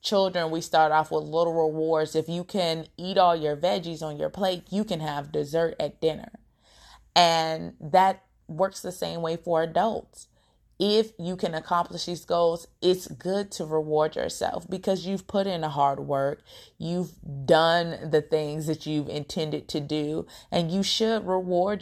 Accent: American